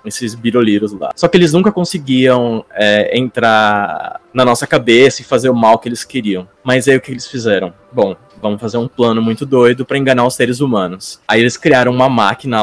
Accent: Brazilian